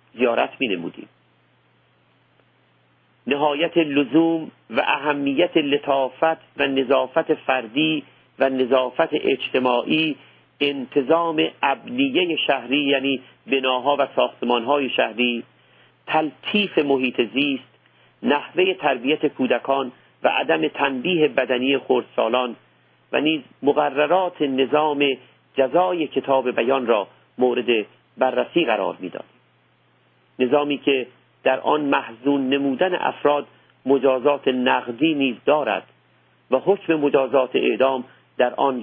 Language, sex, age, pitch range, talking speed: Persian, male, 50-69, 130-150 Hz, 95 wpm